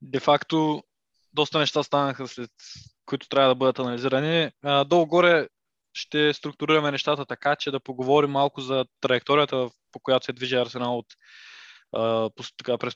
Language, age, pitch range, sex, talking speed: Bulgarian, 20-39, 125-155 Hz, male, 140 wpm